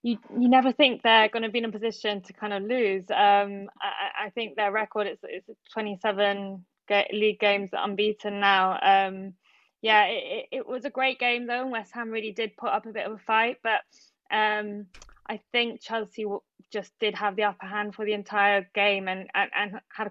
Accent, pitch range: British, 195-215 Hz